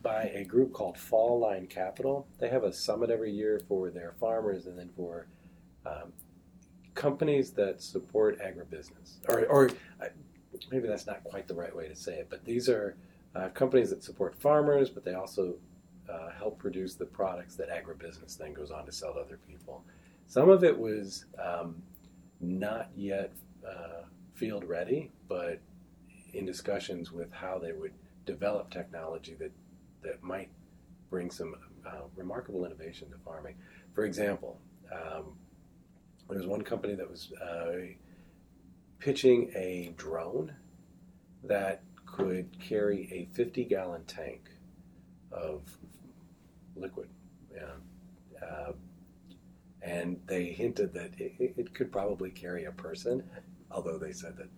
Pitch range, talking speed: 90-120 Hz, 140 wpm